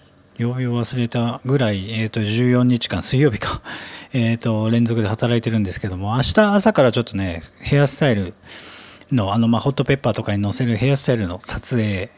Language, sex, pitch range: Japanese, male, 105-130 Hz